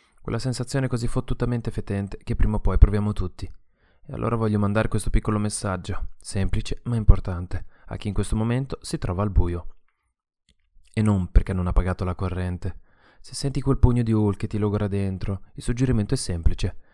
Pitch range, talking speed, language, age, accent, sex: 95-115 Hz, 185 wpm, Italian, 20-39, native, male